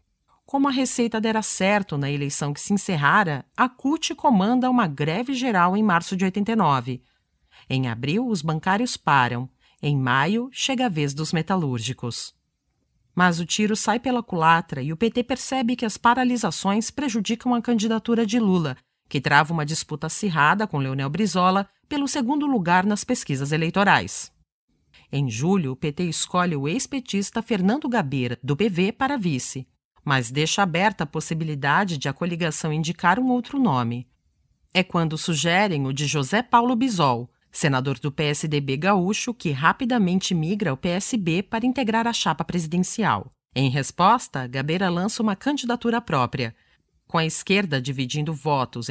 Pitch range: 145-225 Hz